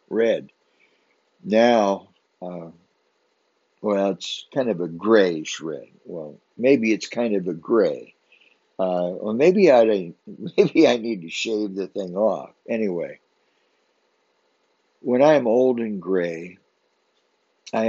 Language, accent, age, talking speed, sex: English, American, 60-79, 115 wpm, male